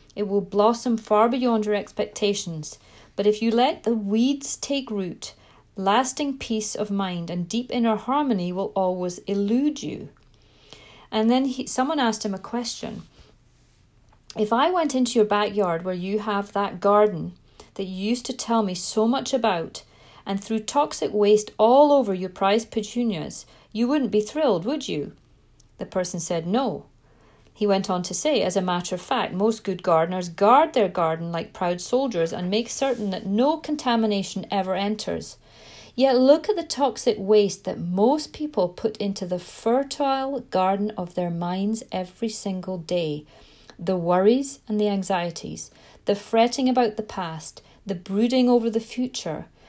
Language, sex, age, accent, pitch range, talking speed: English, female, 40-59, British, 185-240 Hz, 165 wpm